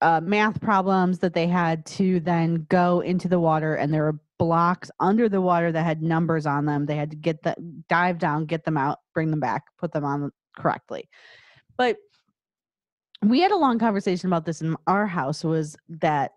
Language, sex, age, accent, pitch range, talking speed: English, female, 30-49, American, 160-215 Hz, 200 wpm